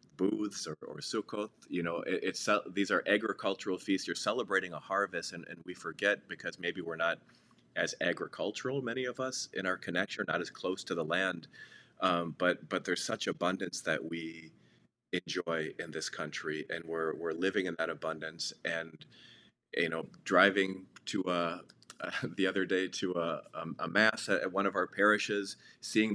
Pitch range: 85-105 Hz